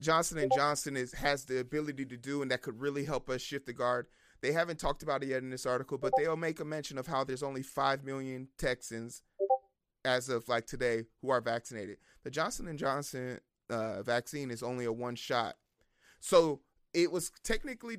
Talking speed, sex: 200 wpm, male